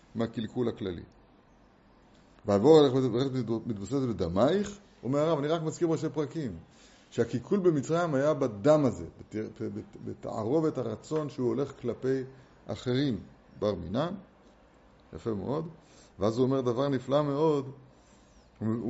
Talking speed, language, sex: 115 wpm, Hebrew, male